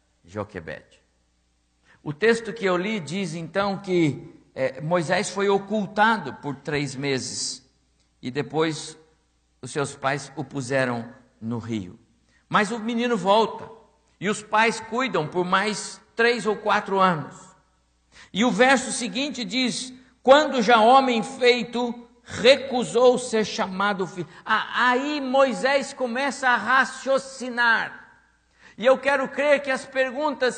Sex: male